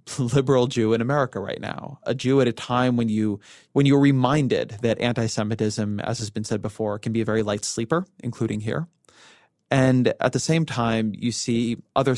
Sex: male